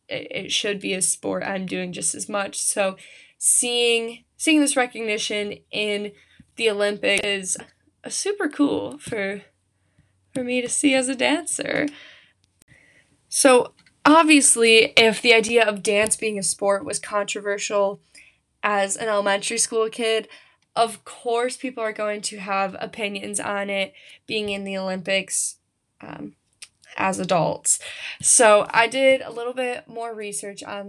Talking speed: 140 wpm